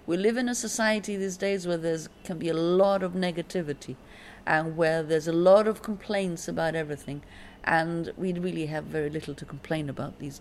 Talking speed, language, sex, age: 195 wpm, English, female, 50-69